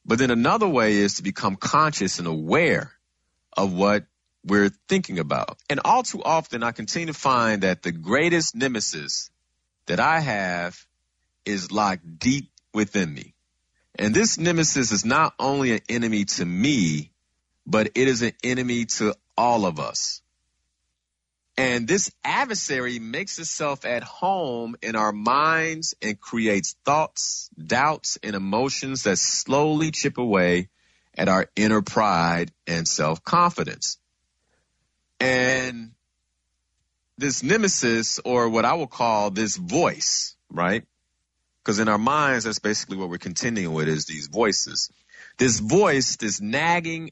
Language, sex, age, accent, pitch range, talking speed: English, male, 40-59, American, 80-130 Hz, 140 wpm